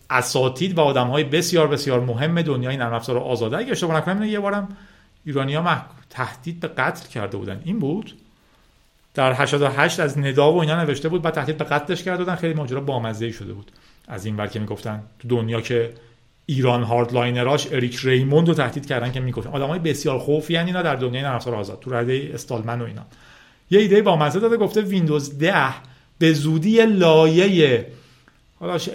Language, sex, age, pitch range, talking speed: Persian, male, 40-59, 125-190 Hz, 180 wpm